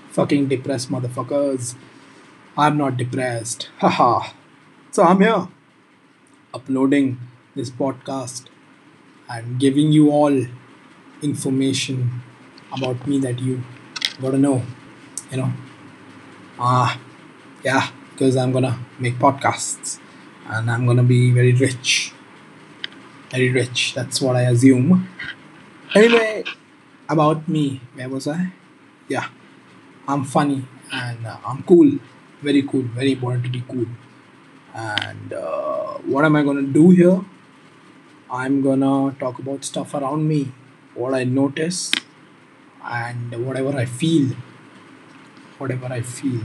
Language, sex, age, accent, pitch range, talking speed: English, male, 20-39, Indian, 125-145 Hz, 120 wpm